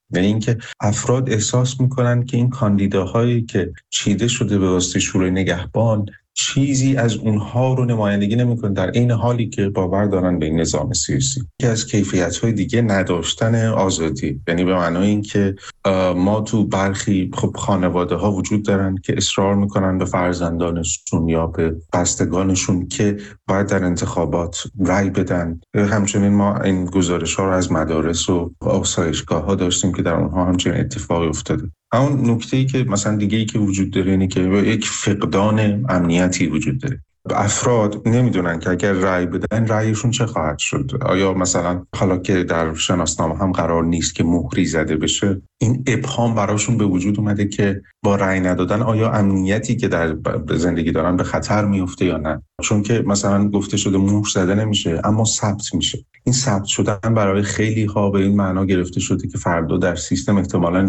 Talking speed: 165 wpm